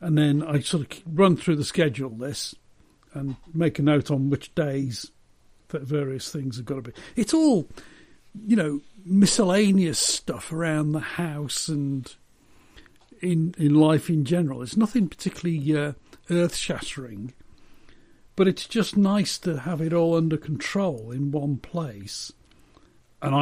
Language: English